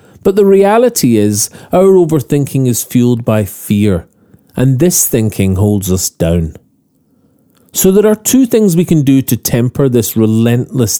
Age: 40-59